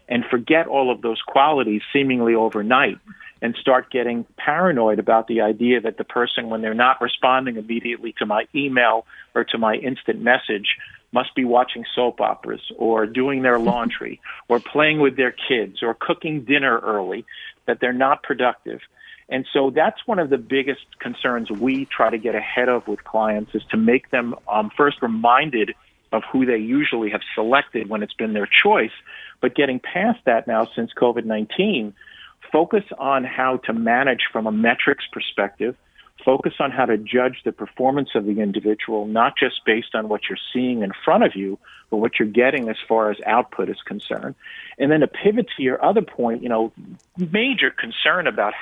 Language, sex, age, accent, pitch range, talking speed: English, male, 50-69, American, 115-140 Hz, 180 wpm